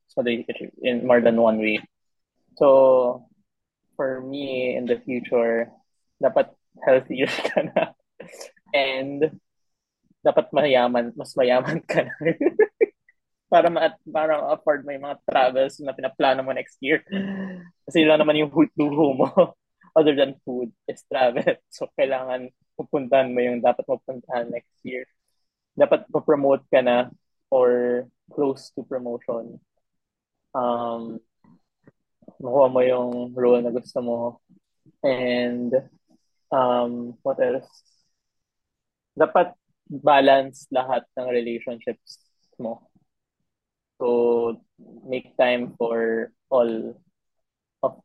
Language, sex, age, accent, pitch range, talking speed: Filipino, male, 20-39, native, 120-150 Hz, 110 wpm